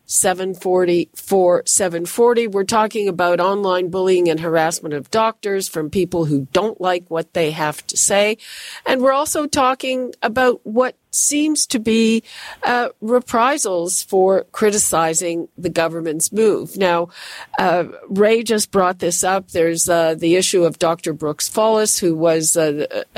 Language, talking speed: English, 140 wpm